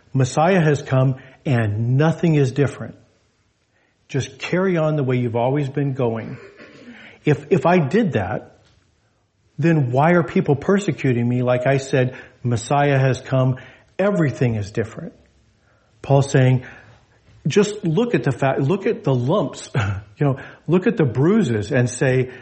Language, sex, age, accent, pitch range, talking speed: English, male, 50-69, American, 115-145 Hz, 145 wpm